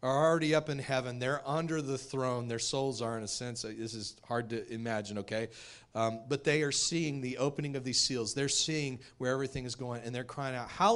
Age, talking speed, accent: 40-59, 230 wpm, American